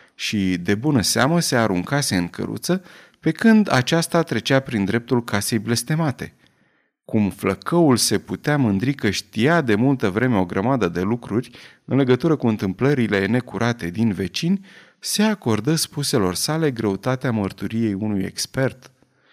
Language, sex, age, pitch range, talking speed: Romanian, male, 30-49, 100-155 Hz, 140 wpm